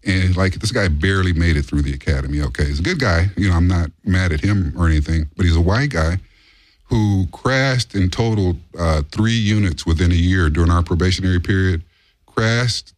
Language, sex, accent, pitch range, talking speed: English, male, American, 80-105 Hz, 205 wpm